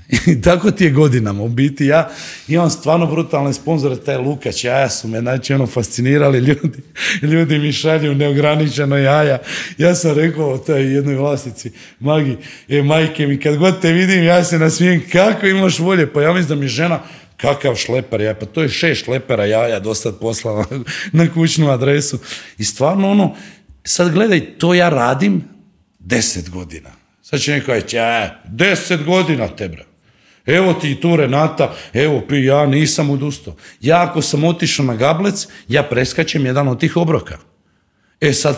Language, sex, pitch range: Croatian, male, 125-165 Hz